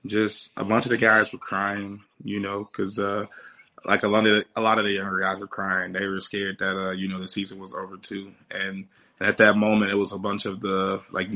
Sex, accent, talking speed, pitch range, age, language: male, American, 255 wpm, 95-105 Hz, 20-39, English